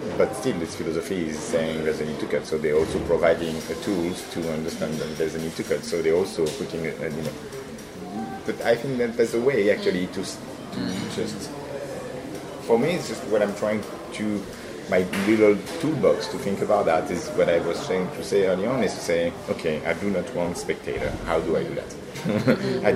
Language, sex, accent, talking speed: English, male, French, 215 wpm